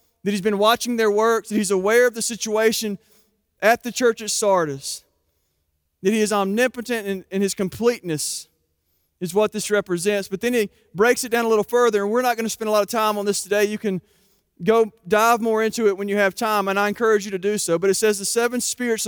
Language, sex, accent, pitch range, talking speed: English, male, American, 185-230 Hz, 235 wpm